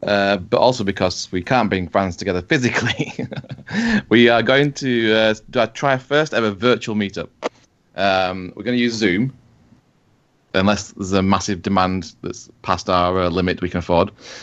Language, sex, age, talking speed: English, male, 20-39, 165 wpm